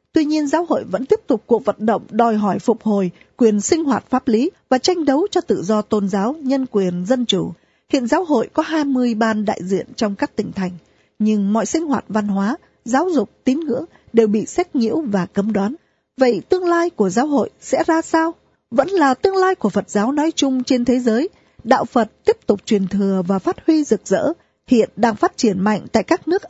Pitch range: 205-280 Hz